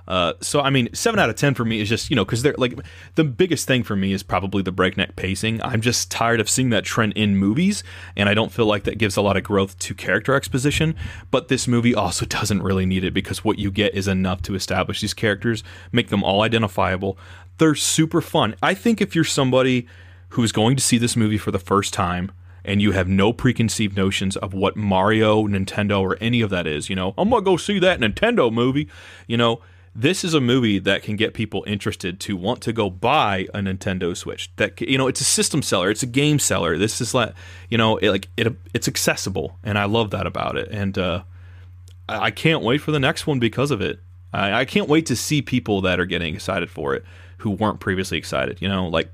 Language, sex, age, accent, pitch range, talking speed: English, male, 30-49, American, 95-125 Hz, 235 wpm